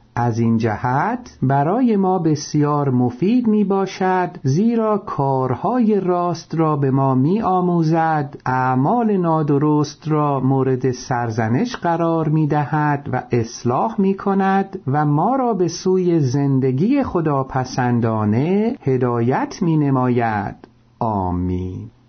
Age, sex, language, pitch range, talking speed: 50-69, male, Persian, 130-185 Hz, 110 wpm